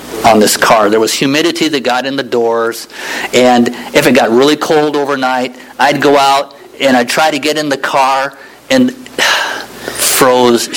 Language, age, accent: English, 50-69, American